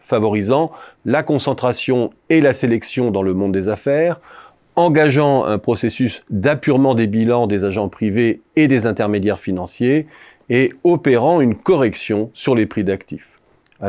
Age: 40-59